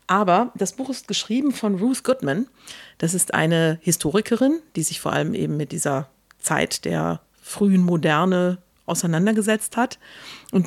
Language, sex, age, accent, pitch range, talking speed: German, female, 50-69, German, 170-220 Hz, 145 wpm